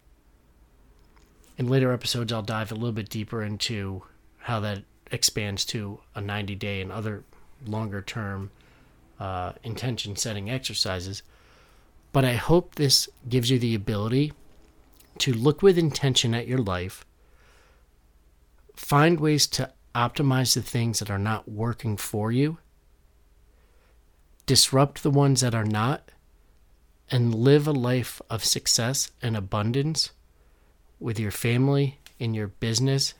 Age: 40-59